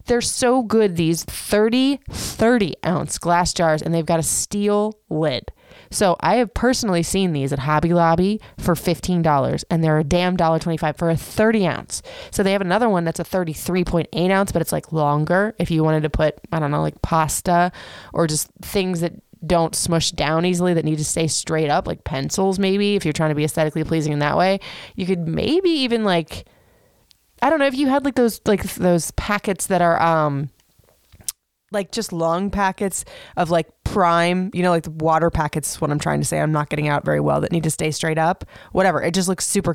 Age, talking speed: 20-39, 205 wpm